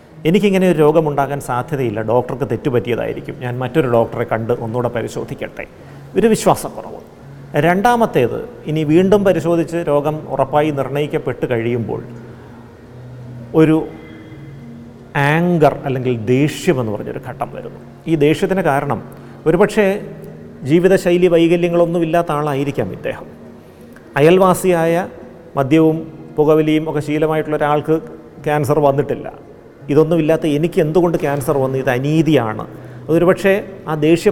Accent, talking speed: native, 100 wpm